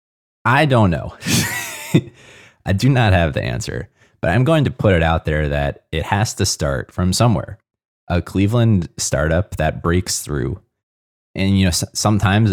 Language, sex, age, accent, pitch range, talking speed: English, male, 20-39, American, 80-100 Hz, 165 wpm